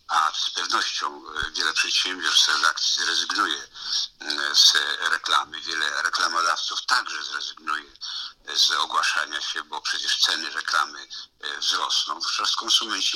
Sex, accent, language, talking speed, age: male, native, Polish, 105 wpm, 50-69